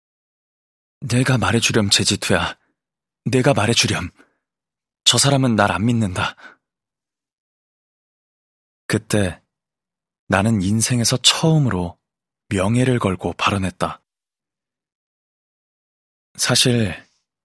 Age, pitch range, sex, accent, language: 20-39, 95-120 Hz, male, native, Korean